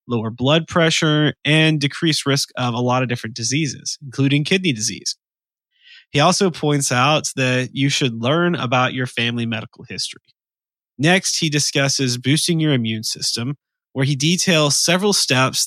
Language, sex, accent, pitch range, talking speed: English, male, American, 120-150 Hz, 155 wpm